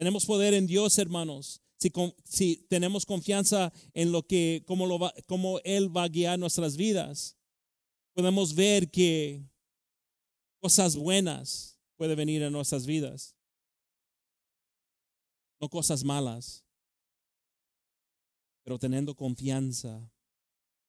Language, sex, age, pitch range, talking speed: English, male, 30-49, 125-170 Hz, 110 wpm